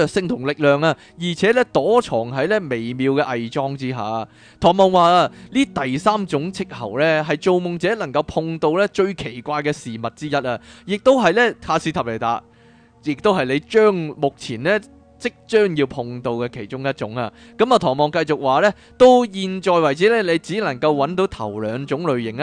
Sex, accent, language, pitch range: male, native, Chinese, 130-195 Hz